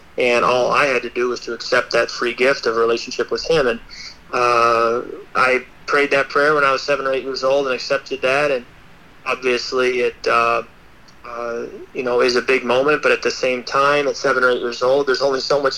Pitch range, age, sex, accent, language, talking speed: 120-145 Hz, 30-49, male, American, English, 230 wpm